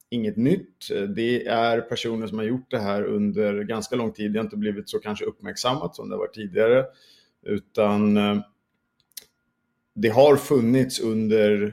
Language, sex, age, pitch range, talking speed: Swedish, male, 50-69, 110-135 Hz, 155 wpm